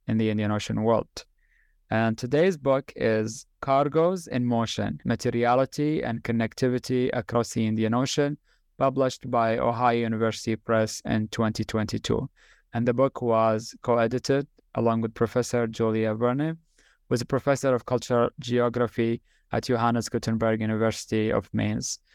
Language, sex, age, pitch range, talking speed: English, male, 20-39, 115-125 Hz, 130 wpm